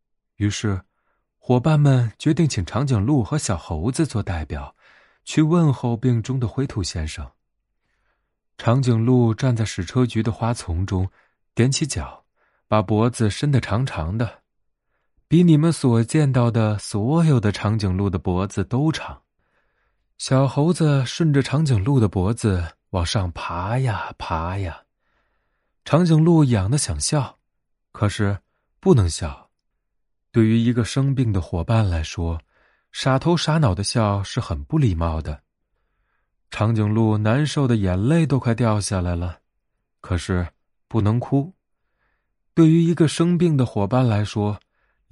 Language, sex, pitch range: Chinese, male, 95-135 Hz